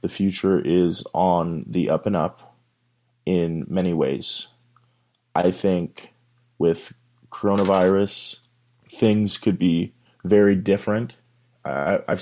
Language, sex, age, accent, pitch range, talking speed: English, male, 30-49, American, 95-120 Hz, 105 wpm